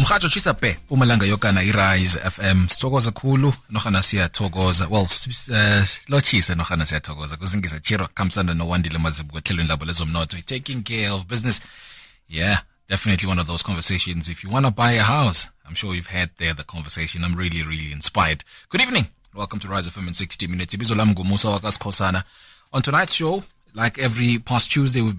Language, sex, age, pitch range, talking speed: English, male, 20-39, 85-105 Hz, 100 wpm